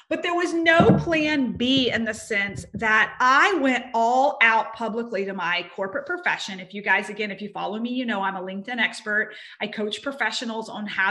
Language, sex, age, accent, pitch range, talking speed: English, female, 30-49, American, 215-290 Hz, 205 wpm